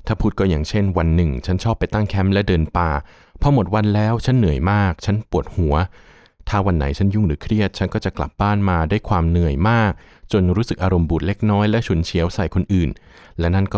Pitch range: 85-105 Hz